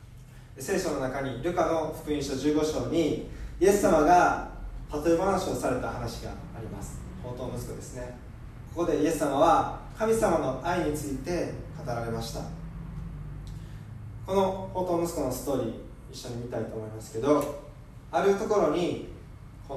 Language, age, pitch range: Japanese, 20-39, 115-160 Hz